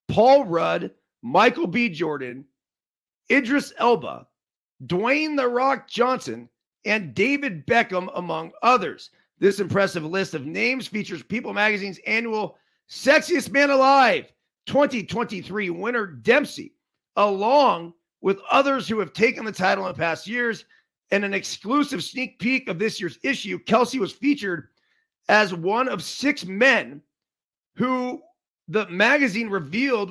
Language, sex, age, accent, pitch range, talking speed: English, male, 40-59, American, 185-250 Hz, 130 wpm